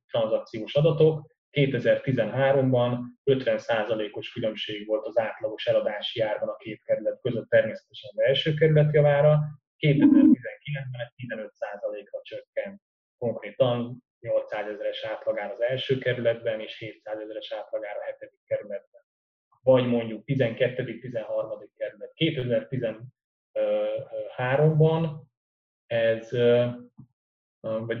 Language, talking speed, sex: Hungarian, 90 wpm, male